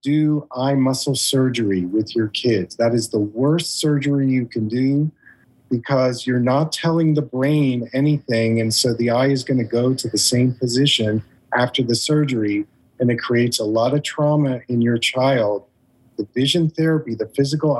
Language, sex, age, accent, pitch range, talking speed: English, male, 40-59, American, 115-145 Hz, 175 wpm